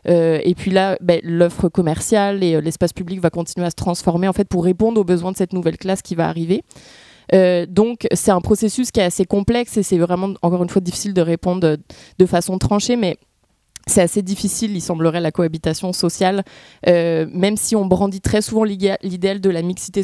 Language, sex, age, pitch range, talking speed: French, female, 20-39, 175-200 Hz, 215 wpm